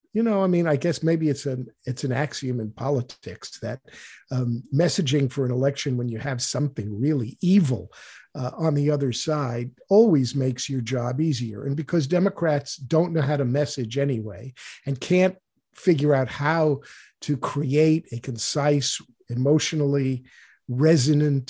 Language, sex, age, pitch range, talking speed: English, male, 50-69, 125-155 Hz, 155 wpm